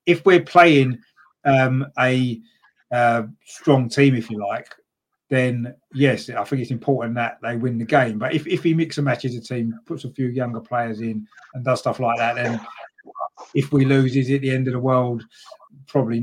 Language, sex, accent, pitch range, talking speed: English, male, British, 120-140 Hz, 200 wpm